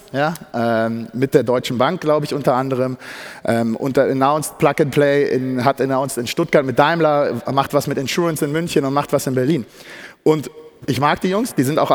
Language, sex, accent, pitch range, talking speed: German, male, German, 130-160 Hz, 210 wpm